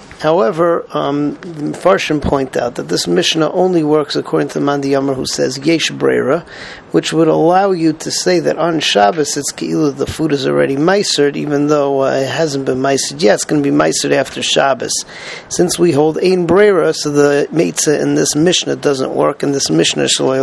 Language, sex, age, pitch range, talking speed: English, male, 40-59, 145-175 Hz, 190 wpm